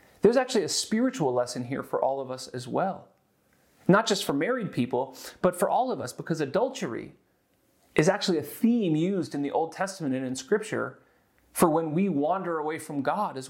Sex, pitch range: male, 140-195 Hz